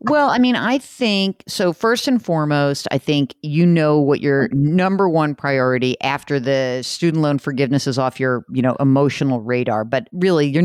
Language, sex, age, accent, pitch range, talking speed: English, female, 50-69, American, 130-180 Hz, 185 wpm